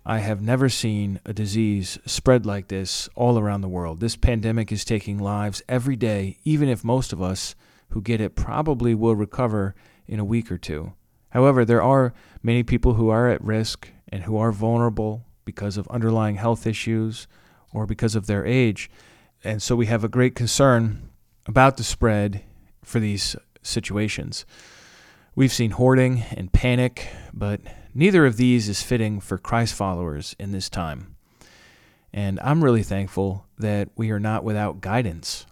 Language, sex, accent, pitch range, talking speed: English, male, American, 100-125 Hz, 165 wpm